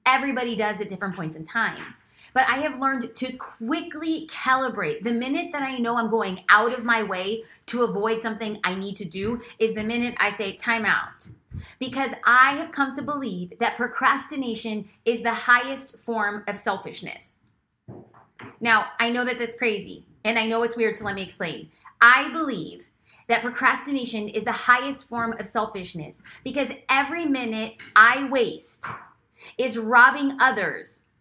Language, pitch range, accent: English, 210-260 Hz, American